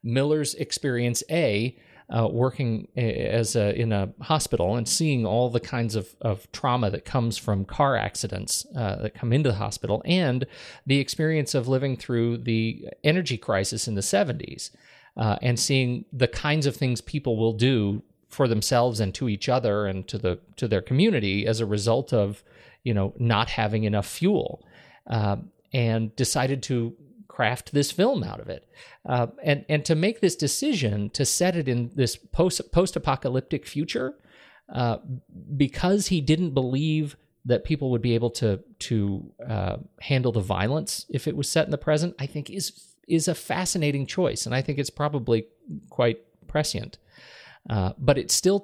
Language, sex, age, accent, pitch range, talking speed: English, male, 40-59, American, 110-150 Hz, 175 wpm